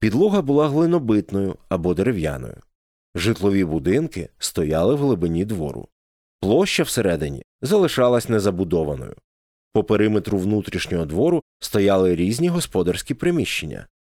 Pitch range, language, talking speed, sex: 90-130 Hz, Ukrainian, 100 wpm, male